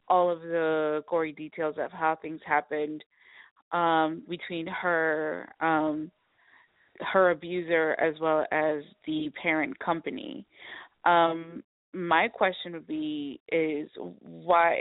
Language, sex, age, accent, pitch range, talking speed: English, female, 30-49, American, 165-200 Hz, 115 wpm